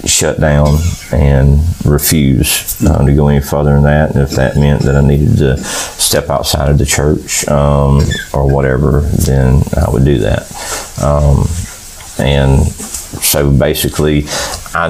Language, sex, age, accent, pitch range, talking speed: English, male, 30-49, American, 70-85 Hz, 150 wpm